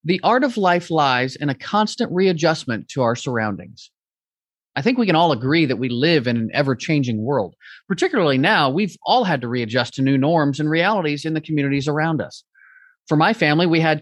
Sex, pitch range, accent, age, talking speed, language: male, 140-190 Hz, American, 30-49, 200 wpm, English